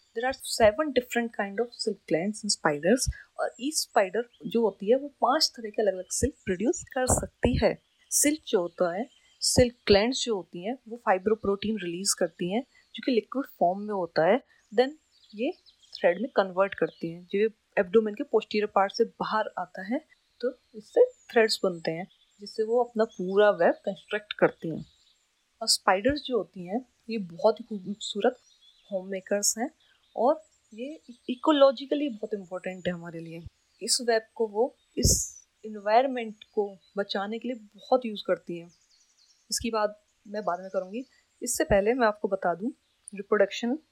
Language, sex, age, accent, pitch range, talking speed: Hindi, female, 30-49, native, 195-245 Hz, 165 wpm